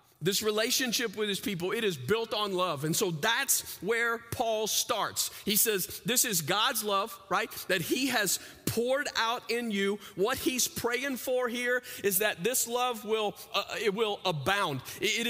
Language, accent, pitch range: English, American, 200-255 Hz